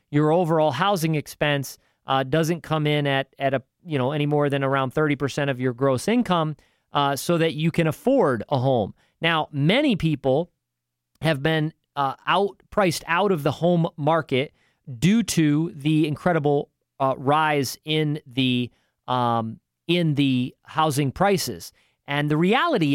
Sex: male